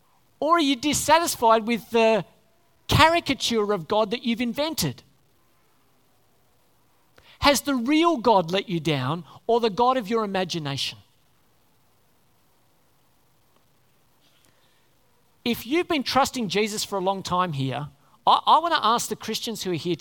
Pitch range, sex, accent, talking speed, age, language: 145-245 Hz, male, Australian, 130 wpm, 50-69, English